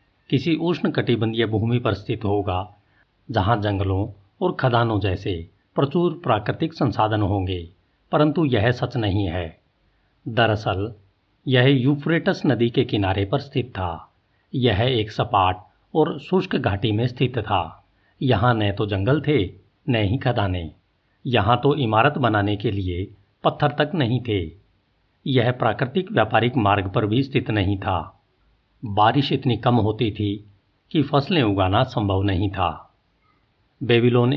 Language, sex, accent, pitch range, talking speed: Hindi, male, native, 100-130 Hz, 135 wpm